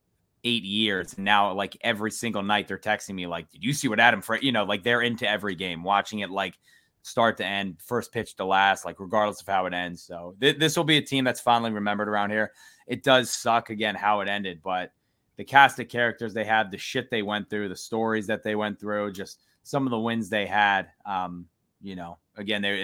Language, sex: English, male